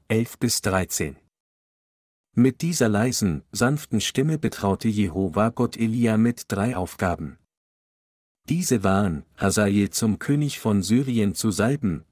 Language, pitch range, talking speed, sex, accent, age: German, 100-120 Hz, 120 wpm, male, German, 50-69